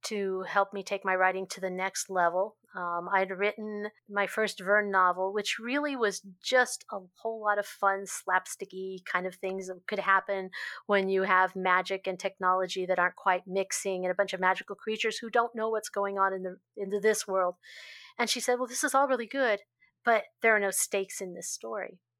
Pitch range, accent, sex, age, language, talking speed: 185-220 Hz, American, female, 40-59, English, 215 wpm